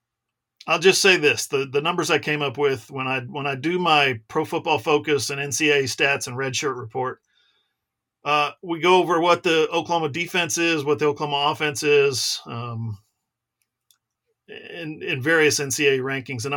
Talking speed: 175 wpm